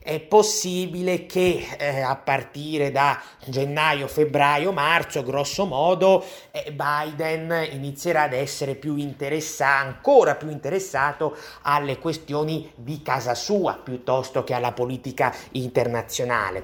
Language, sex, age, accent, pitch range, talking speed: Italian, male, 30-49, native, 135-165 Hz, 110 wpm